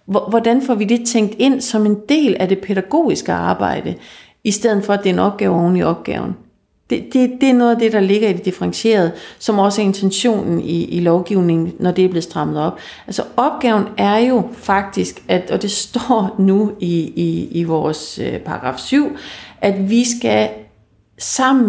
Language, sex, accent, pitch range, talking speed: Danish, female, native, 170-220 Hz, 190 wpm